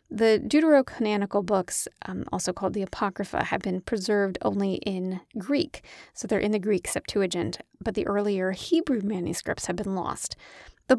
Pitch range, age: 195-265 Hz, 30-49